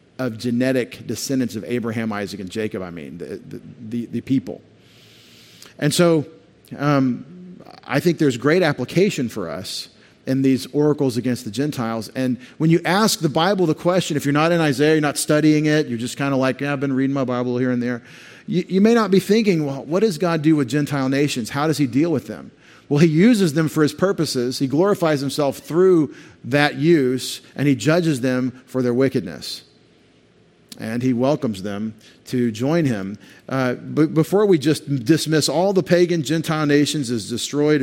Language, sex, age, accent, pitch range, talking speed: English, male, 40-59, American, 125-160 Hz, 190 wpm